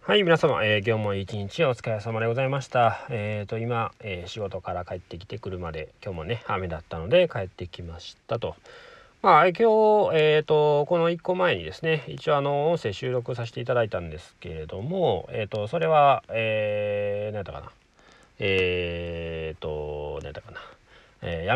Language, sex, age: Japanese, male, 40-59